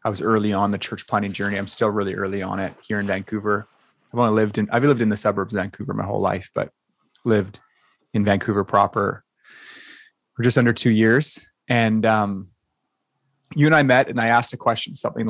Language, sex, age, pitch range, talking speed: English, male, 20-39, 105-120 Hz, 210 wpm